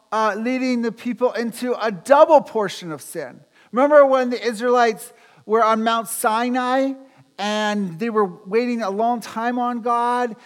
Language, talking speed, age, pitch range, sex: English, 155 wpm, 50-69, 170-235 Hz, male